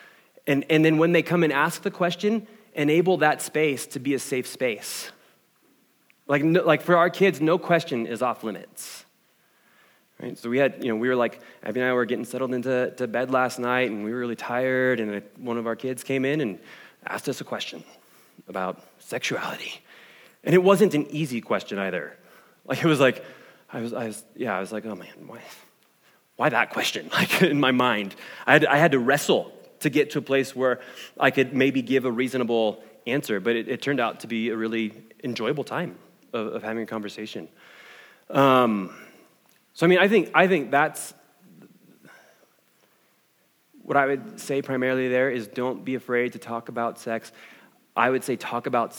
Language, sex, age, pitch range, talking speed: English, male, 20-39, 115-145 Hz, 195 wpm